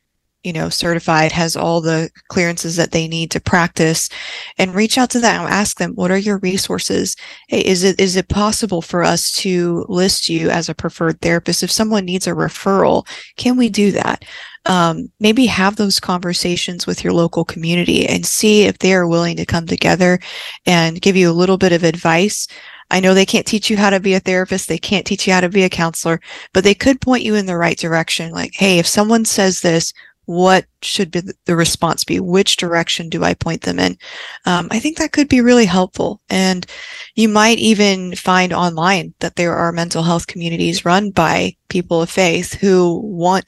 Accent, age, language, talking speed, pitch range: American, 20-39, English, 205 wpm, 170-200 Hz